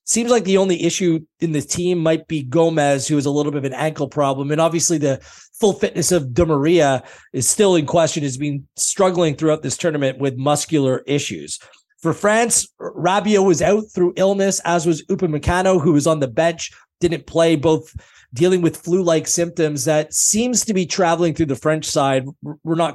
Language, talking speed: English, 195 wpm